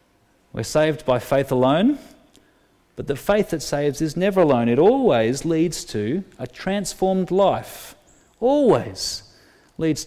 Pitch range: 105-140 Hz